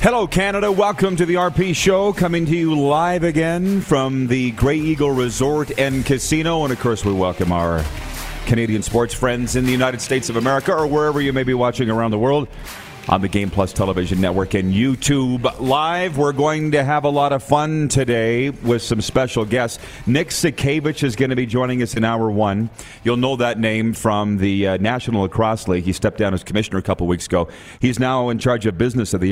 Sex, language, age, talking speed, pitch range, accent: male, English, 40-59, 210 wpm, 105-140 Hz, American